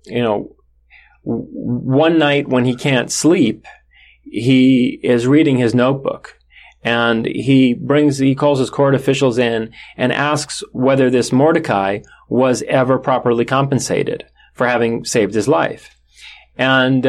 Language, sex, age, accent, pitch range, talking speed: English, male, 30-49, American, 115-140 Hz, 130 wpm